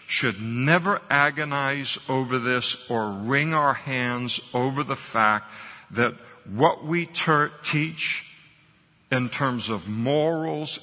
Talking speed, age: 110 wpm, 60-79